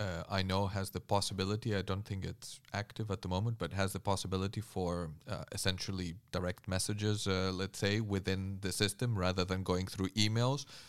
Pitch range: 95-110 Hz